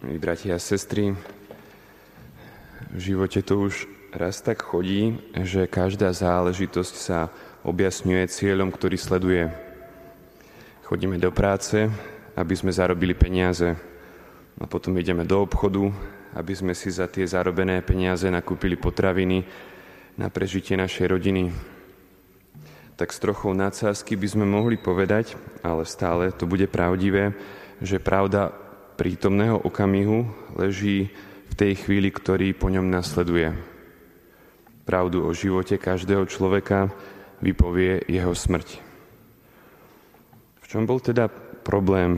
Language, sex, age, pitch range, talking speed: Slovak, male, 20-39, 90-100 Hz, 115 wpm